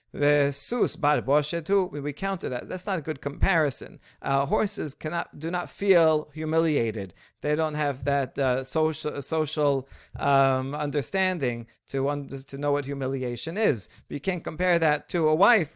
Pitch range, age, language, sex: 140-175 Hz, 50-69, English, male